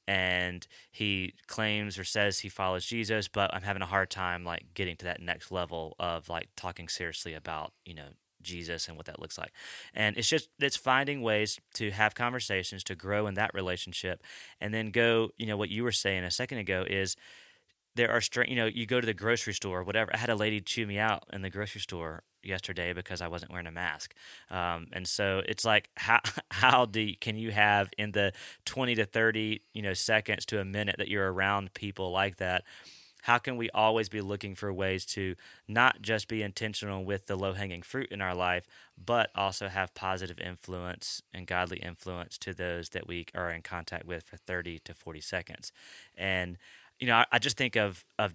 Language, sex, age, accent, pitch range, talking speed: English, male, 30-49, American, 90-110 Hz, 210 wpm